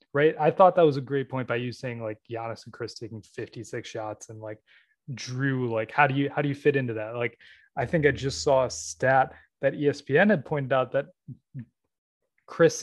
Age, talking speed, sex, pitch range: 20-39, 215 wpm, male, 120-150 Hz